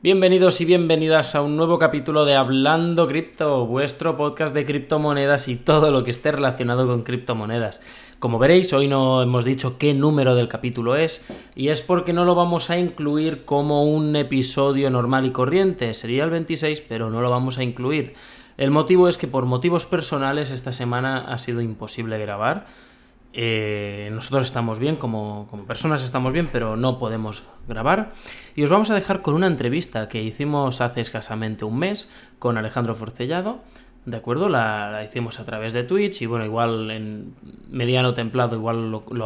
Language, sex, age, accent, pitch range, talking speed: Spanish, male, 20-39, Spanish, 120-150 Hz, 180 wpm